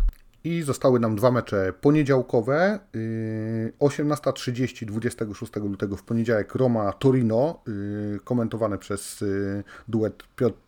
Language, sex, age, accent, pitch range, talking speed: Polish, male, 40-59, native, 105-135 Hz, 90 wpm